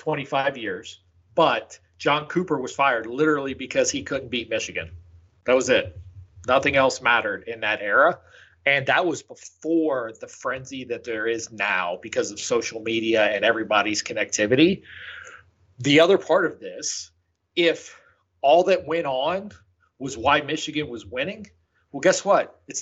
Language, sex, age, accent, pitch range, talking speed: English, male, 40-59, American, 115-160 Hz, 155 wpm